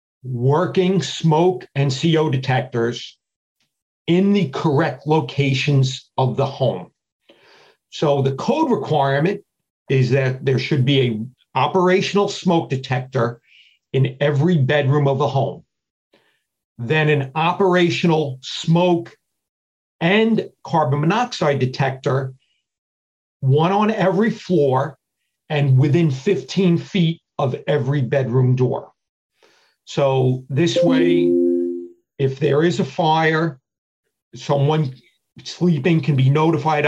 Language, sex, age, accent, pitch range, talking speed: English, male, 50-69, American, 130-170 Hz, 105 wpm